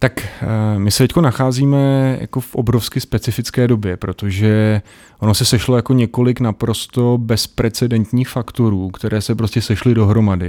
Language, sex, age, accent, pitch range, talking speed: Czech, male, 30-49, native, 100-115 Hz, 135 wpm